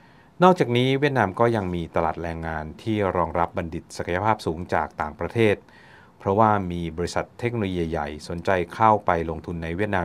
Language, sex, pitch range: Thai, male, 85-110 Hz